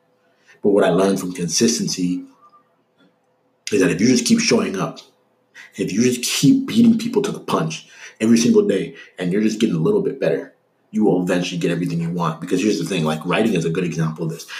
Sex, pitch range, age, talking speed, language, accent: male, 85-115 Hz, 30-49, 220 wpm, English, American